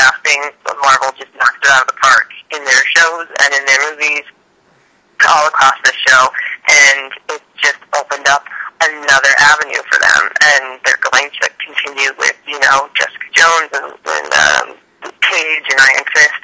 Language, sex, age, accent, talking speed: English, male, 40-59, American, 170 wpm